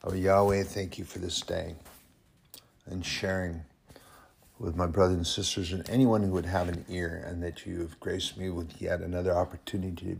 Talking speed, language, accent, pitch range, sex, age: 190 wpm, English, American, 85-95 Hz, male, 60-79